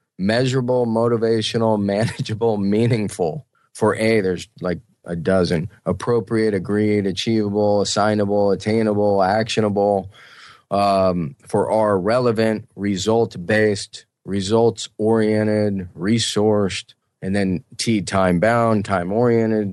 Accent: American